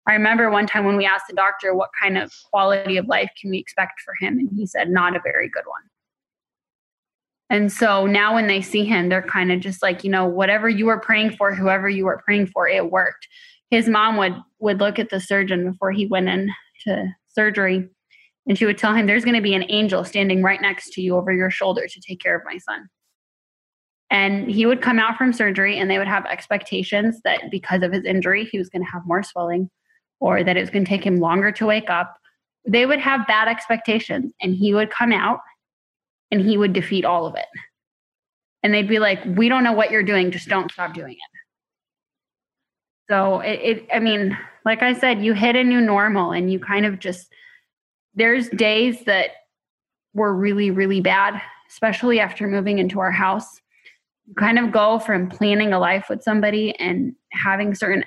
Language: English